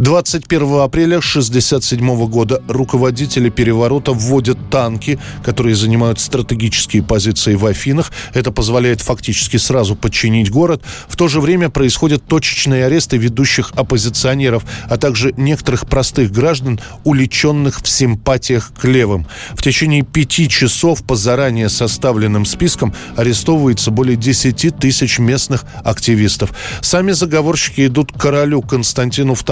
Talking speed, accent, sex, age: 120 wpm, native, male, 20-39